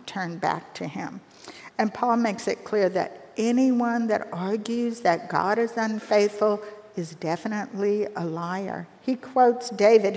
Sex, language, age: female, English, 50-69